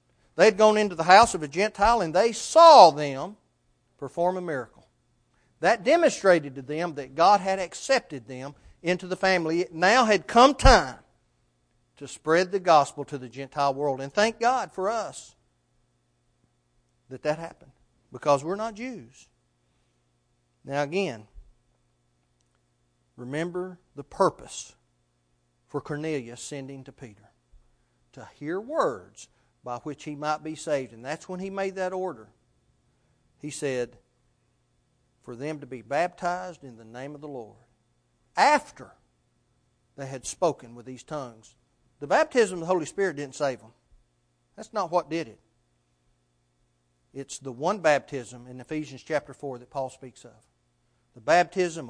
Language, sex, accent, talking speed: English, male, American, 145 wpm